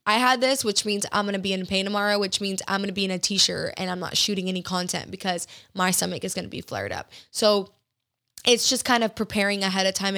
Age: 10-29